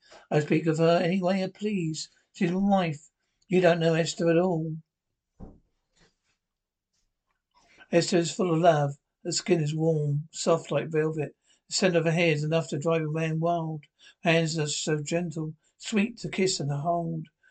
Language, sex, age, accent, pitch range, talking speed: English, male, 60-79, British, 160-185 Hz, 180 wpm